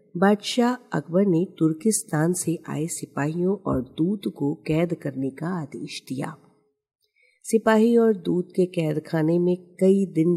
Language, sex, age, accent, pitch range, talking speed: Hindi, female, 50-69, native, 150-205 Hz, 135 wpm